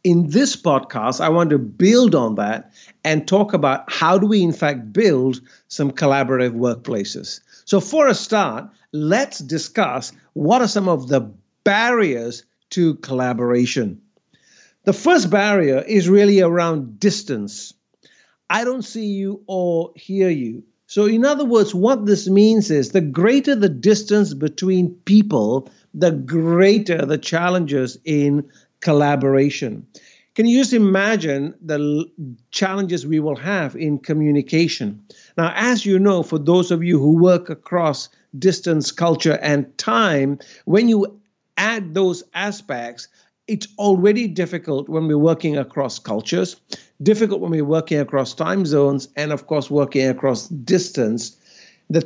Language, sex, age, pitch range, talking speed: English, male, 50-69, 145-200 Hz, 140 wpm